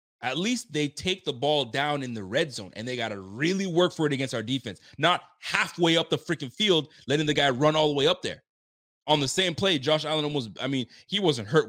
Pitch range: 115-175 Hz